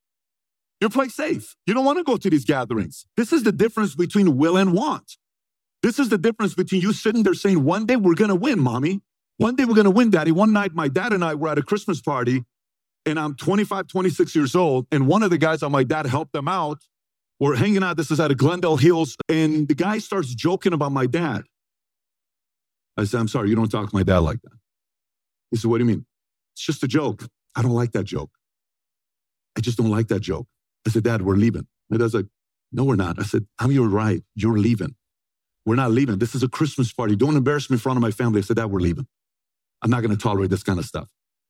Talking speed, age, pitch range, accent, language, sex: 240 wpm, 50-69, 110-170 Hz, American, English, male